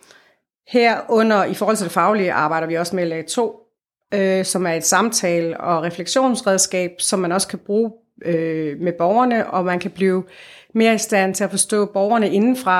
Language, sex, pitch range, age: Danish, female, 180-220 Hz, 30-49